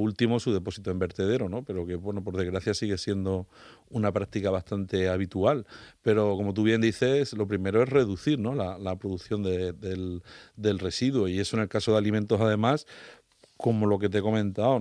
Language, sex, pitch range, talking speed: Spanish, male, 95-110 Hz, 200 wpm